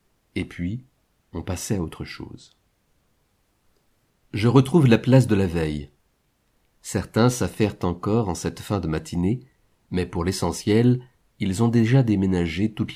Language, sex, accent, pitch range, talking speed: French, male, French, 85-115 Hz, 140 wpm